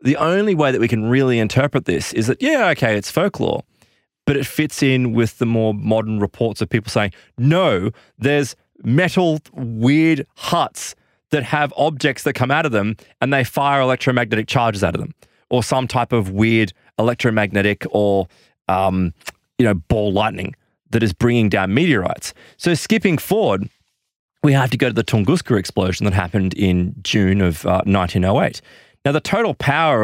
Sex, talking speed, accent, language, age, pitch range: male, 175 wpm, Australian, English, 20-39, 105-140 Hz